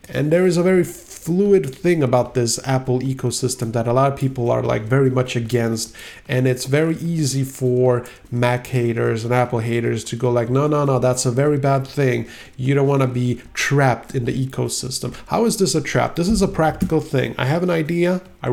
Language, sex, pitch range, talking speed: English, male, 125-155 Hz, 215 wpm